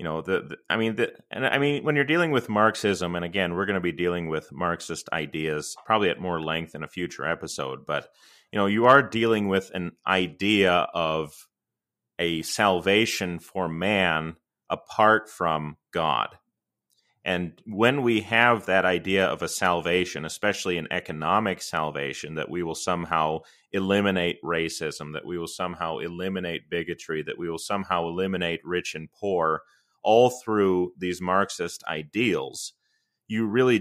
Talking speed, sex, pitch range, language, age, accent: 160 wpm, male, 85-110 Hz, English, 30-49, American